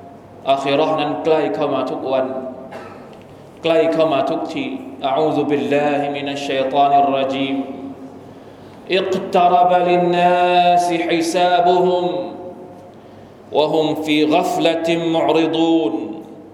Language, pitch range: Thai, 150-180 Hz